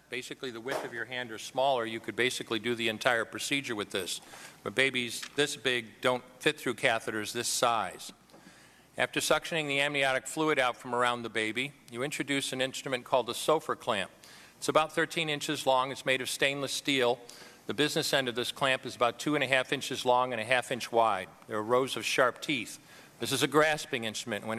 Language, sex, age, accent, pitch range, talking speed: English, male, 50-69, American, 120-140 Hz, 210 wpm